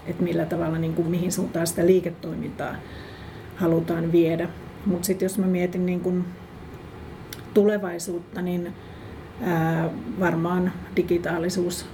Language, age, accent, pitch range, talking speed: Finnish, 40-59, native, 170-185 Hz, 115 wpm